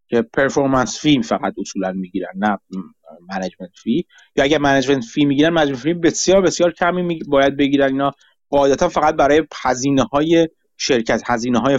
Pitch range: 125-165 Hz